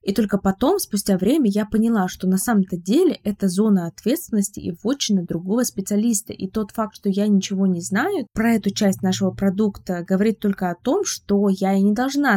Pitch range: 190-215 Hz